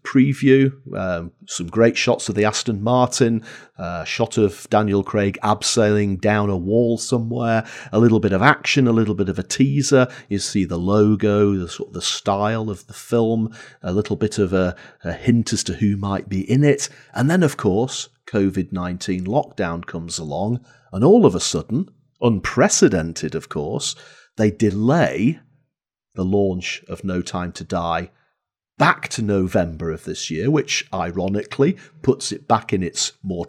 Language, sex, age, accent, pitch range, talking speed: English, male, 40-59, British, 95-125 Hz, 165 wpm